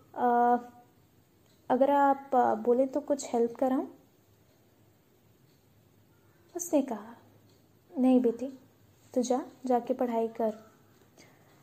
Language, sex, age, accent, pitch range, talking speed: Hindi, female, 20-39, native, 225-285 Hz, 95 wpm